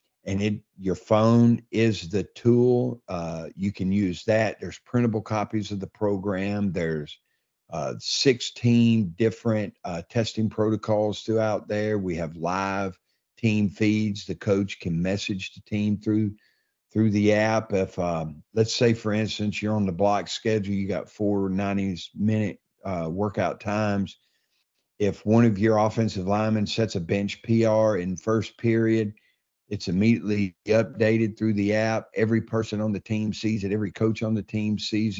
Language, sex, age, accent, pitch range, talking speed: English, male, 50-69, American, 100-115 Hz, 155 wpm